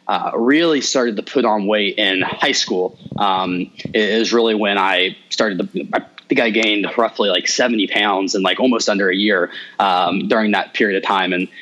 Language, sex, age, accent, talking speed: English, male, 20-39, American, 195 wpm